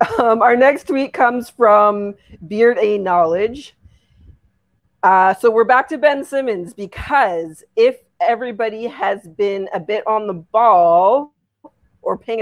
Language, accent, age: English, American, 30-49